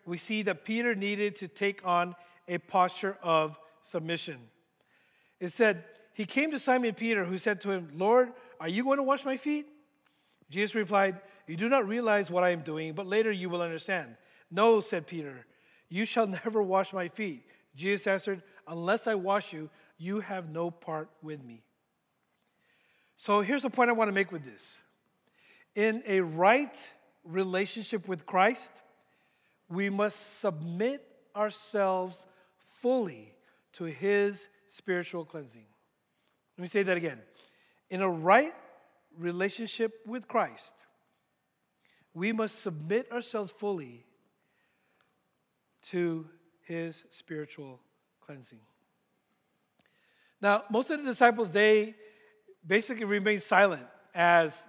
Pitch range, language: 170-215 Hz, English